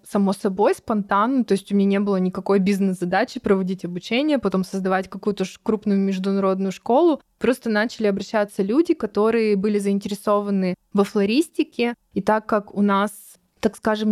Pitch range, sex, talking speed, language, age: 195-220 Hz, female, 150 wpm, Russian, 20-39